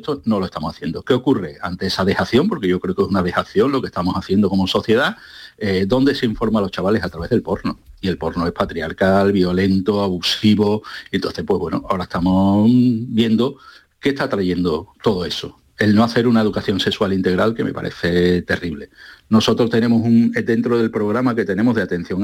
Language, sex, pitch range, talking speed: Spanish, male, 95-115 Hz, 195 wpm